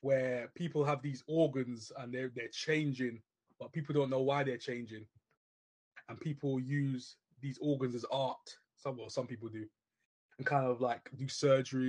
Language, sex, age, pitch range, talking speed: English, male, 20-39, 125-145 Hz, 170 wpm